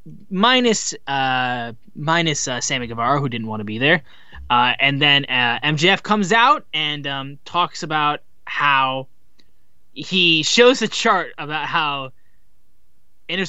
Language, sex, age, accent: English, male, 20-39, American